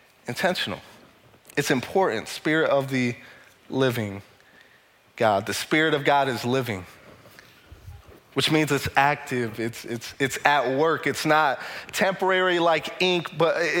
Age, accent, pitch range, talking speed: 30-49, American, 135-160 Hz, 125 wpm